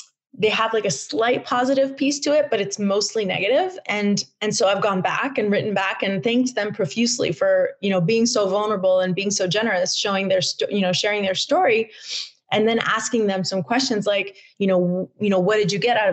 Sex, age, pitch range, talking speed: female, 20-39, 190-230 Hz, 220 wpm